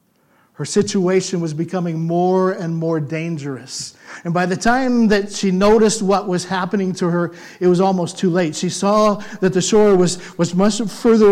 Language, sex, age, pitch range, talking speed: English, male, 50-69, 165-205 Hz, 180 wpm